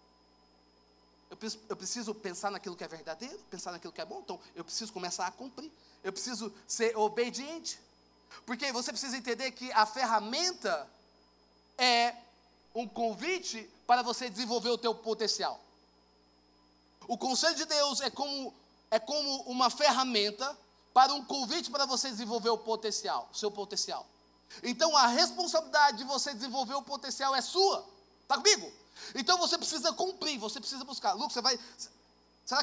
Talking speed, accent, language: 145 wpm, Brazilian, Portuguese